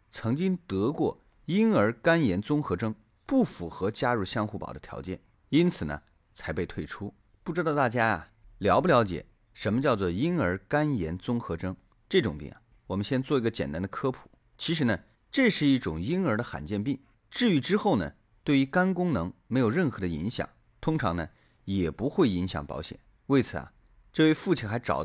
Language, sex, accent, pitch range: Chinese, male, native, 95-145 Hz